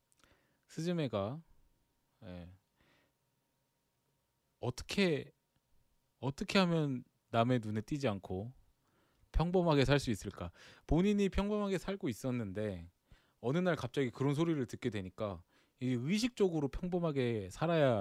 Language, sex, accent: Korean, male, native